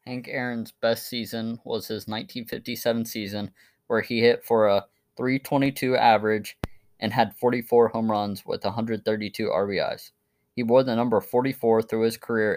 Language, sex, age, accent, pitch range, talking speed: English, male, 20-39, American, 105-120 Hz, 150 wpm